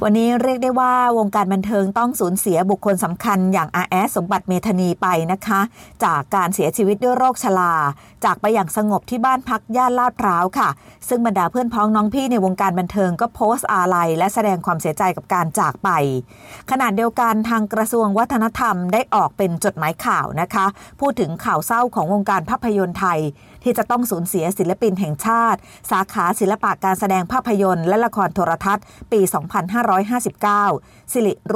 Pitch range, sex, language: 185-230 Hz, female, Thai